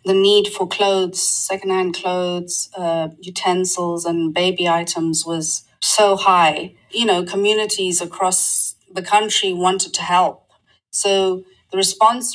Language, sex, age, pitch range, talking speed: English, female, 30-49, 170-200 Hz, 125 wpm